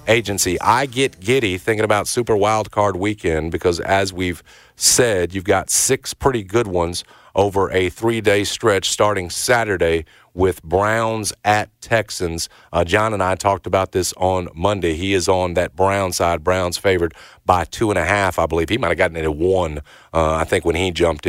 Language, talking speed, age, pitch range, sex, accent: English, 180 wpm, 40-59, 95-110 Hz, male, American